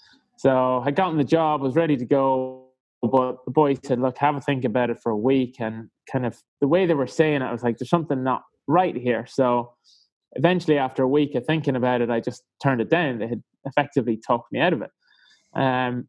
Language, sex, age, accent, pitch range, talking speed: English, male, 20-39, British, 120-140 Hz, 230 wpm